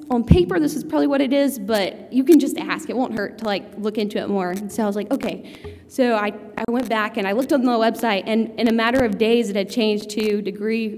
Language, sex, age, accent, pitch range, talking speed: English, female, 20-39, American, 200-240 Hz, 275 wpm